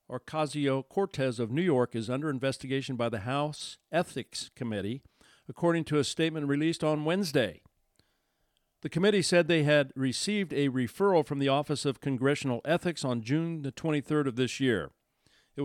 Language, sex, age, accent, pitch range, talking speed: English, male, 50-69, American, 120-150 Hz, 155 wpm